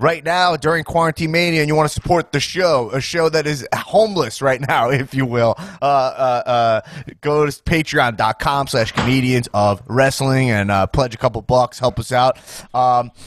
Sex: male